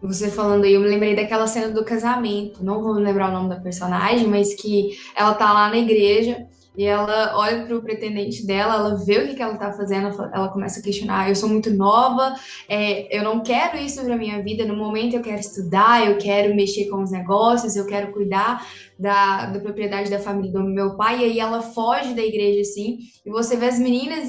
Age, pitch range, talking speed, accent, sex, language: 10-29, 200-240 Hz, 215 wpm, Brazilian, female, Portuguese